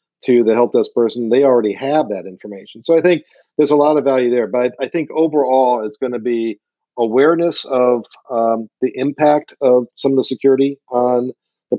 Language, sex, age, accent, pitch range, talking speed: English, male, 40-59, American, 115-135 Hz, 195 wpm